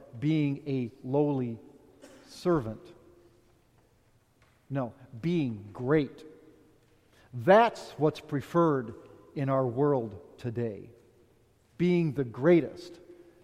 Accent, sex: American, male